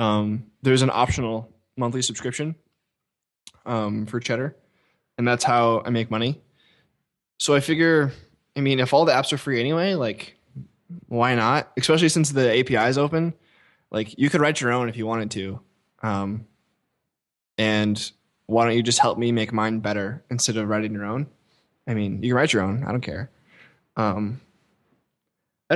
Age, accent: 20-39, American